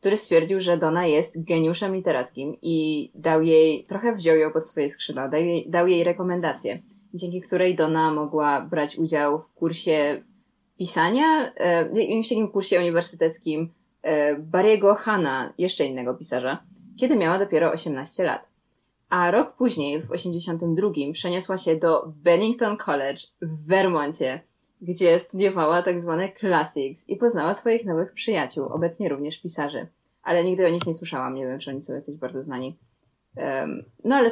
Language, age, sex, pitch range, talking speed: Polish, 20-39, female, 155-195 Hz, 145 wpm